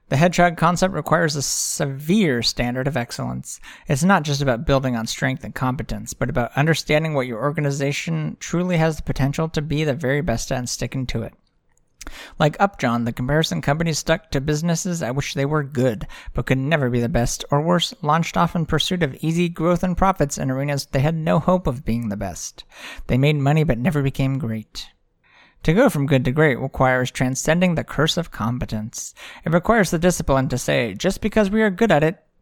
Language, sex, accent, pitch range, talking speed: English, male, American, 130-175 Hz, 205 wpm